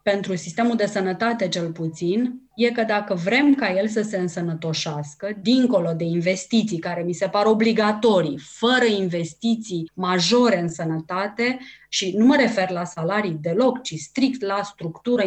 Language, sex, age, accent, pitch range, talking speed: Romanian, female, 30-49, native, 180-245 Hz, 155 wpm